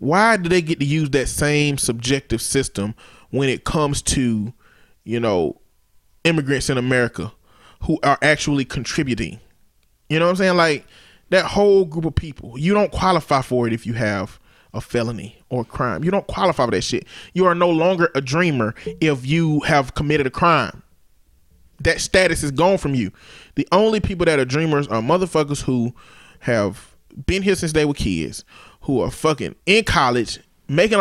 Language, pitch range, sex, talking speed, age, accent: English, 125-165 Hz, male, 180 wpm, 20-39, American